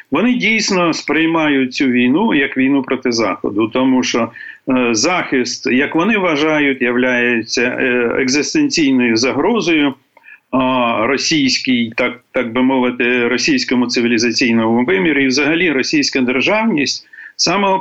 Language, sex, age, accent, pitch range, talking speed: Ukrainian, male, 40-59, native, 130-190 Hz, 110 wpm